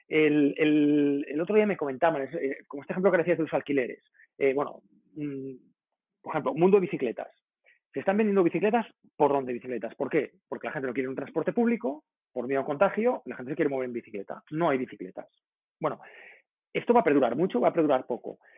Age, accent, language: 30-49, Spanish, Spanish